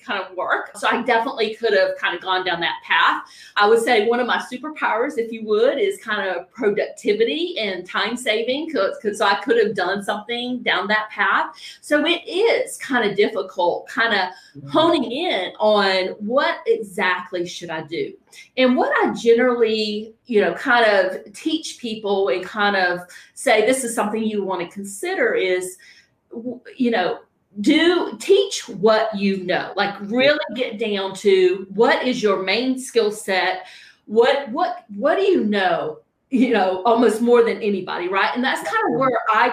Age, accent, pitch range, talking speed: 40-59, American, 195-255 Hz, 180 wpm